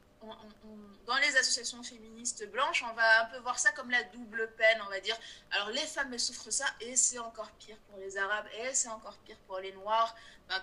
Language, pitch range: French, 210-290 Hz